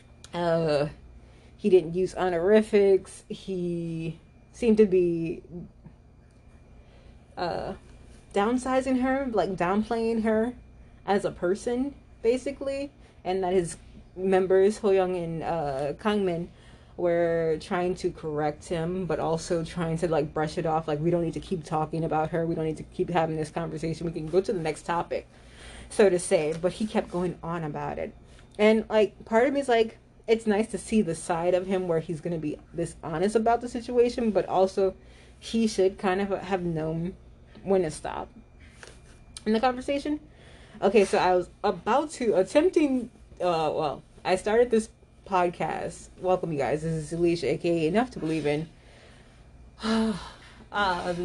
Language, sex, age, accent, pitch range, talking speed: English, female, 30-49, American, 165-210 Hz, 160 wpm